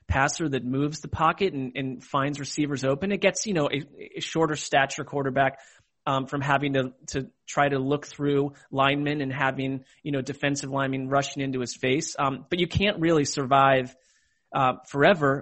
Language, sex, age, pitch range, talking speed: English, male, 30-49, 135-160 Hz, 185 wpm